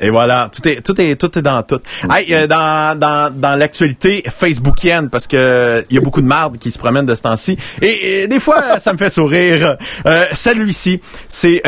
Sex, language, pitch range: male, French, 140-210 Hz